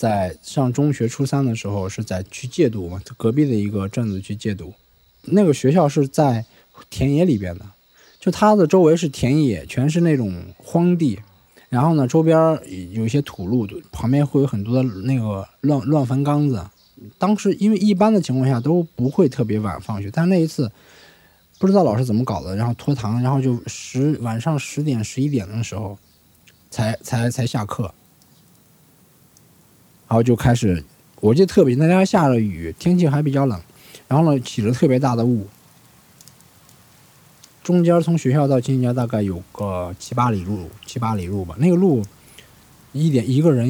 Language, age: Chinese, 20-39